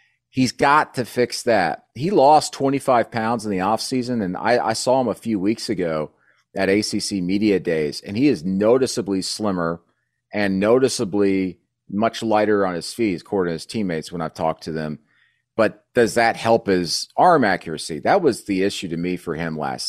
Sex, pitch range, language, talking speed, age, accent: male, 95-120 Hz, English, 185 wpm, 40-59, American